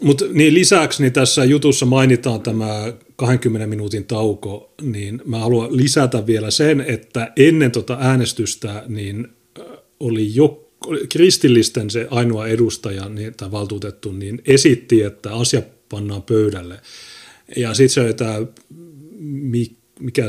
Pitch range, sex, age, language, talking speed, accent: 105-130 Hz, male, 30-49, Finnish, 125 wpm, native